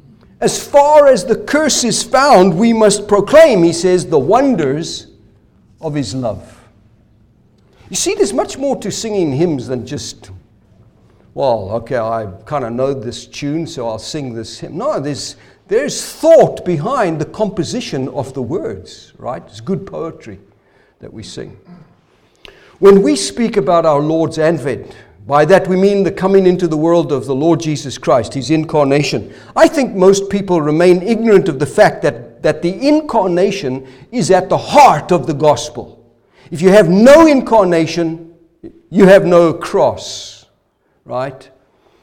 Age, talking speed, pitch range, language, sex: 60-79, 155 wpm, 130-195 Hz, English, male